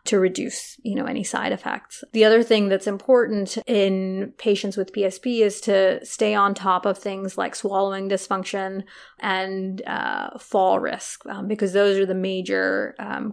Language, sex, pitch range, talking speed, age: English, female, 190-220 Hz, 165 wpm, 20-39